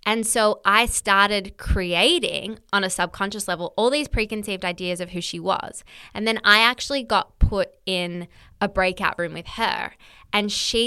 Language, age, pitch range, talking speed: English, 10-29, 185-225 Hz, 170 wpm